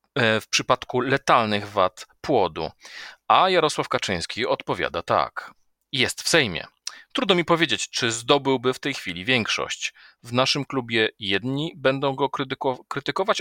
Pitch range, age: 105-145 Hz, 40-59